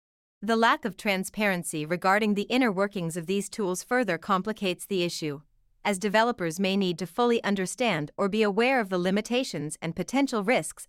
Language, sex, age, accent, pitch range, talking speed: English, female, 30-49, American, 175-225 Hz, 170 wpm